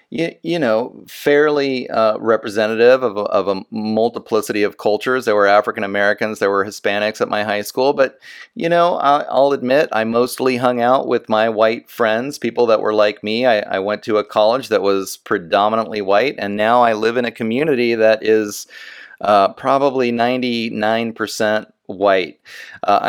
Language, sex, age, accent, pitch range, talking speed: English, male, 30-49, American, 110-135 Hz, 170 wpm